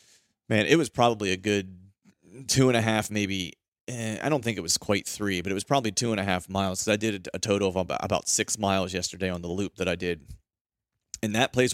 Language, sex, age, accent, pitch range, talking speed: English, male, 30-49, American, 90-105 Hz, 250 wpm